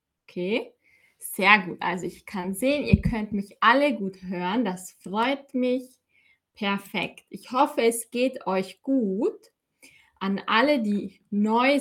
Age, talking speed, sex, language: 20-39, 135 wpm, female, German